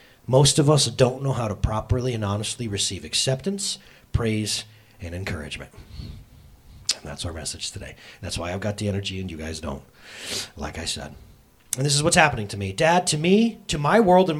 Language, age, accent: English, 30-49, American